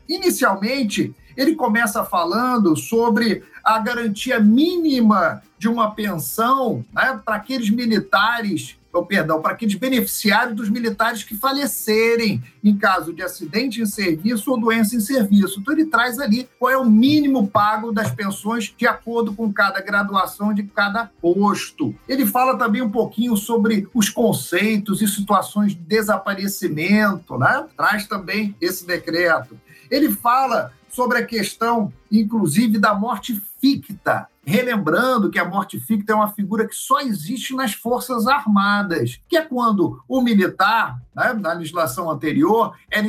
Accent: Brazilian